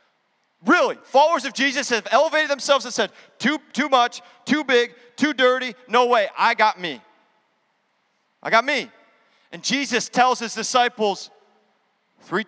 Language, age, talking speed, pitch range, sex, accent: English, 30-49, 145 wpm, 170-245 Hz, male, American